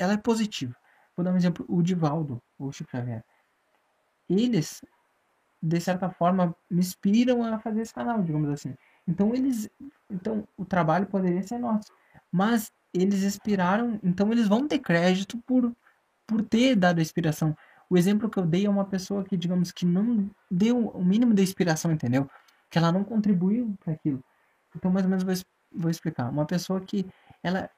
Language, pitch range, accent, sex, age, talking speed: Portuguese, 175-215 Hz, Brazilian, male, 20-39, 175 wpm